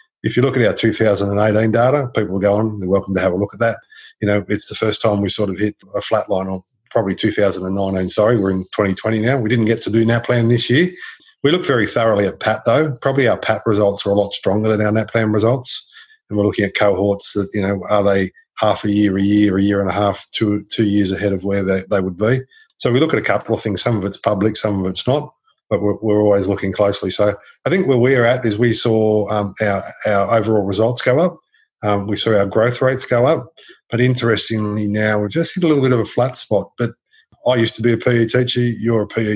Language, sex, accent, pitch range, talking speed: English, male, Australian, 100-115 Hz, 255 wpm